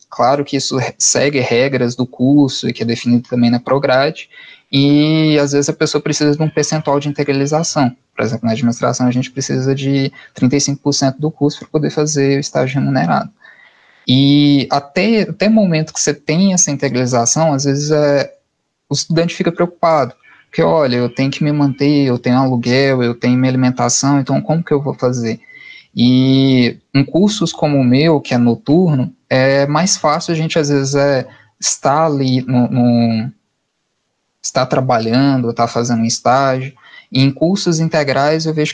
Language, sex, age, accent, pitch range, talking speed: Portuguese, male, 20-39, Brazilian, 125-155 Hz, 170 wpm